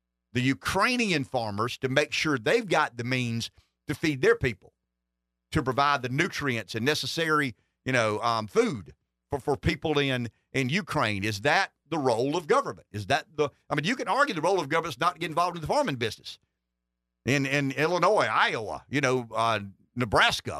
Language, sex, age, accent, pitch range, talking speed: English, male, 50-69, American, 115-160 Hz, 190 wpm